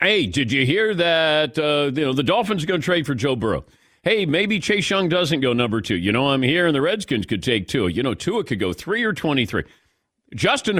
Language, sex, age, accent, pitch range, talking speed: English, male, 50-69, American, 120-165 Hz, 245 wpm